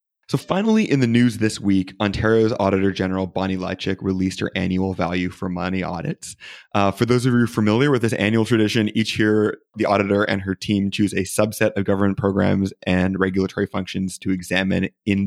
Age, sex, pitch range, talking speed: 20-39, male, 95-110 Hz, 190 wpm